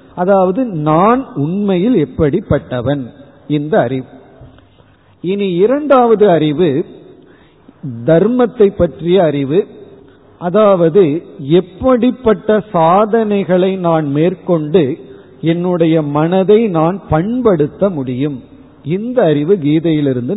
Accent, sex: native, male